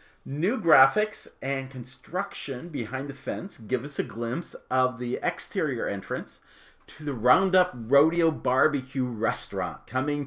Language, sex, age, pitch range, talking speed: English, male, 40-59, 115-150 Hz, 130 wpm